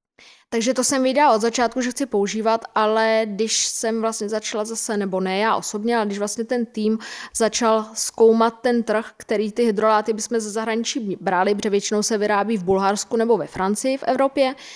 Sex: female